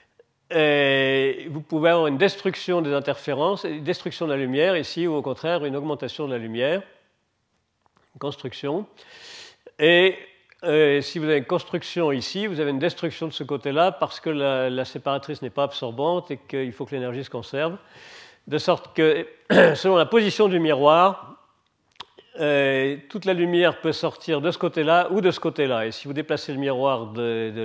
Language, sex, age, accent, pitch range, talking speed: French, male, 50-69, French, 140-175 Hz, 180 wpm